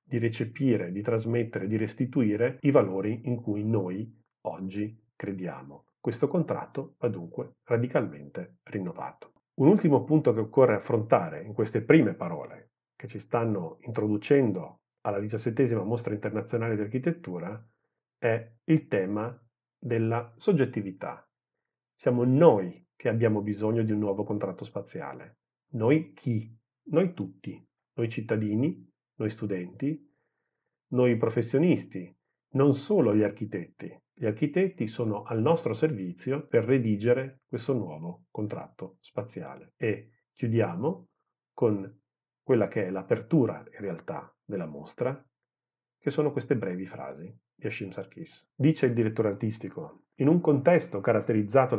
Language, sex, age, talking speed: Italian, male, 40-59, 125 wpm